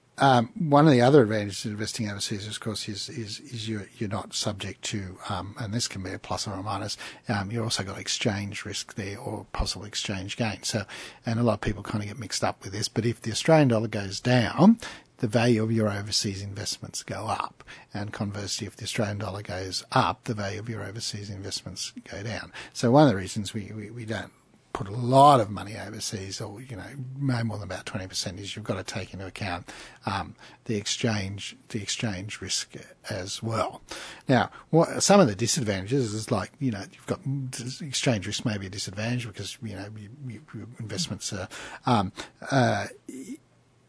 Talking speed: 205 wpm